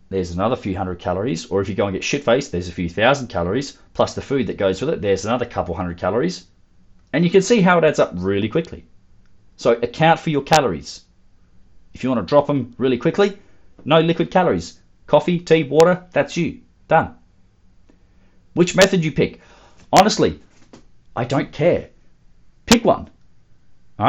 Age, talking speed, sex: 30-49, 180 wpm, male